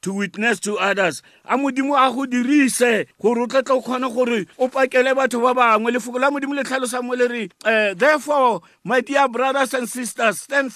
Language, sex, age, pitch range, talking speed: English, male, 50-69, 185-260 Hz, 180 wpm